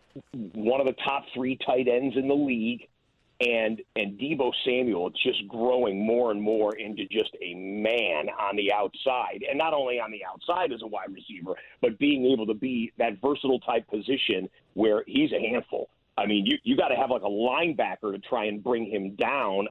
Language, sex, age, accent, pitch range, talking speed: English, male, 40-59, American, 110-130 Hz, 200 wpm